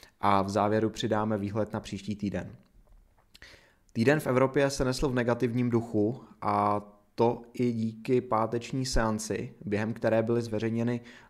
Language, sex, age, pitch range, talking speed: Czech, male, 20-39, 105-120 Hz, 140 wpm